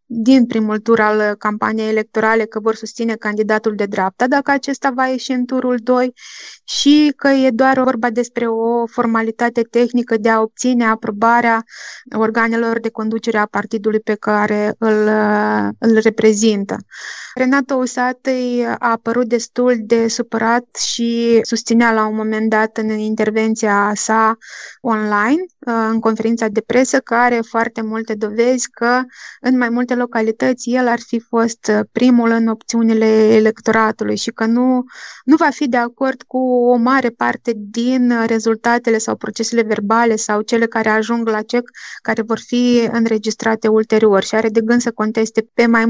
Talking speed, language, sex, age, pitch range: 155 wpm, Romanian, female, 20-39, 220-245 Hz